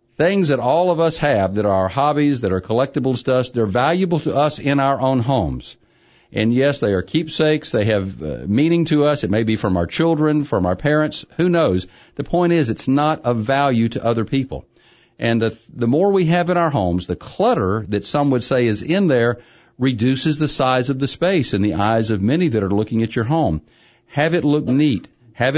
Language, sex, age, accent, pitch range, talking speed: English, male, 50-69, American, 110-155 Hz, 225 wpm